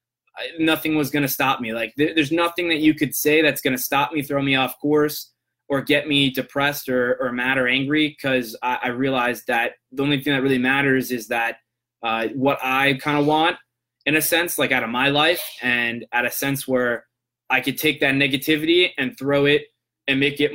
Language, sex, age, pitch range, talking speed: English, male, 20-39, 125-145 Hz, 215 wpm